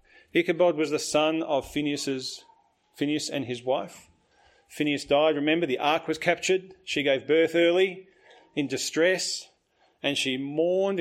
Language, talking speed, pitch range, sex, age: English, 135 wpm, 135-170 Hz, male, 40-59